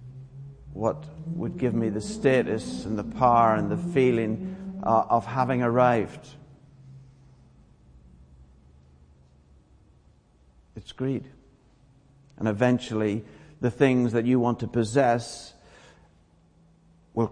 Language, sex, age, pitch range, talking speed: English, male, 60-79, 100-125 Hz, 95 wpm